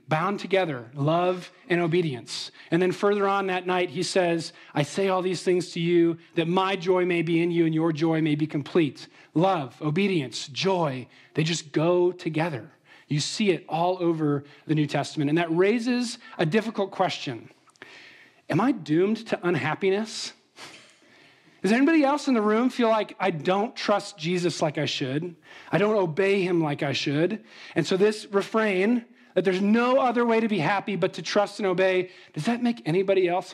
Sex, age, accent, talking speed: male, 40-59, American, 185 wpm